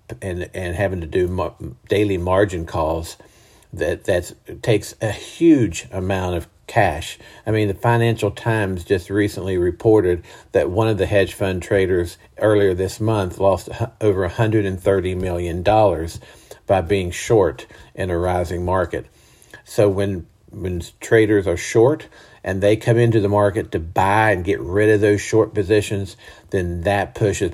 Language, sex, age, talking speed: English, male, 50-69, 150 wpm